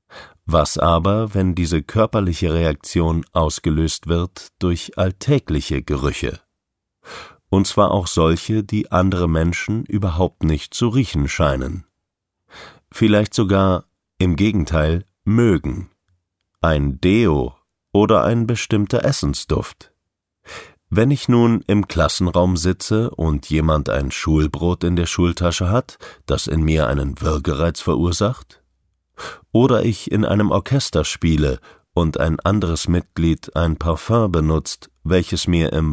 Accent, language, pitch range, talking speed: German, German, 80-100 Hz, 115 wpm